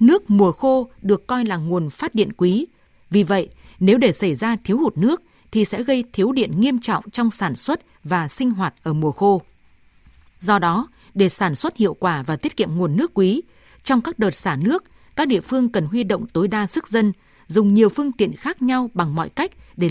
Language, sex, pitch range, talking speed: Vietnamese, female, 185-240 Hz, 220 wpm